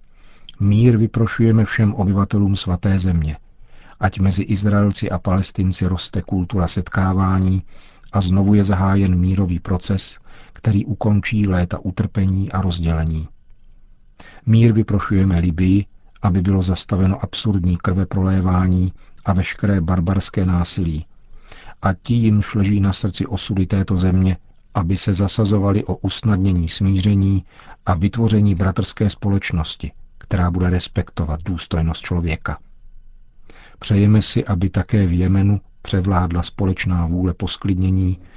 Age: 50-69